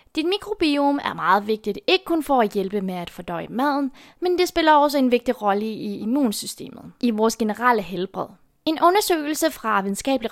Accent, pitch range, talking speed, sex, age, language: native, 210-290 Hz, 180 wpm, female, 20-39, Danish